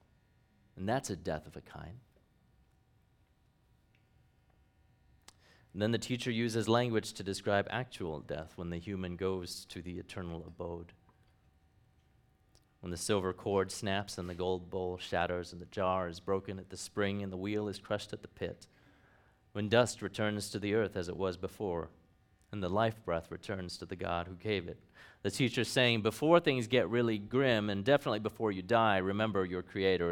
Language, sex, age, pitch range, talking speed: English, male, 30-49, 90-110 Hz, 175 wpm